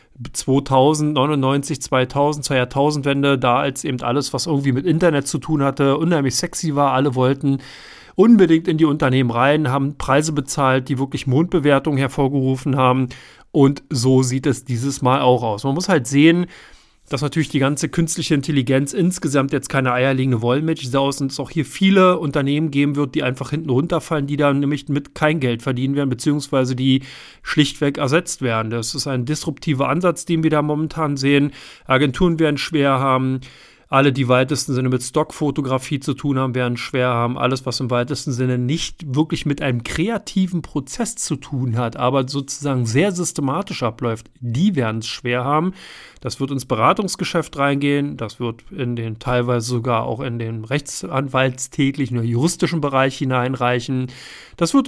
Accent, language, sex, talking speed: German, German, male, 165 wpm